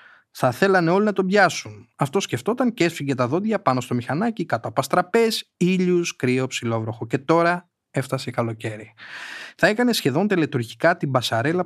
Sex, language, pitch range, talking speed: male, Greek, 125-185 Hz, 160 wpm